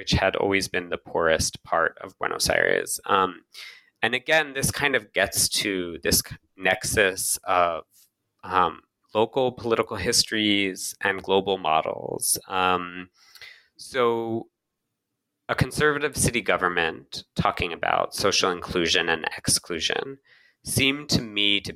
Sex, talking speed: male, 120 wpm